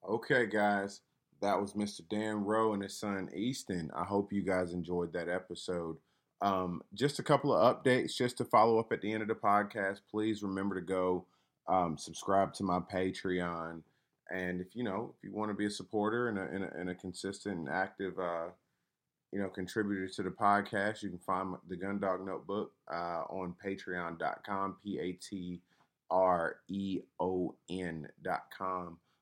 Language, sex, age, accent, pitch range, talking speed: English, male, 20-39, American, 95-115 Hz, 170 wpm